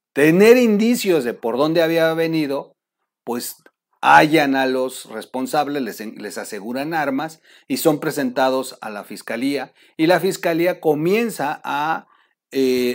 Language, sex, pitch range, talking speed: Spanish, male, 130-185 Hz, 125 wpm